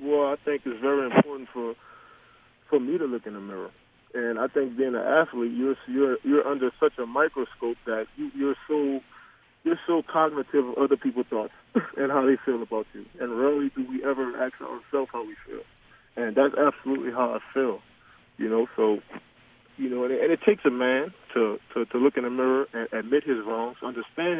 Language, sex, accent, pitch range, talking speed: English, male, American, 120-140 Hz, 205 wpm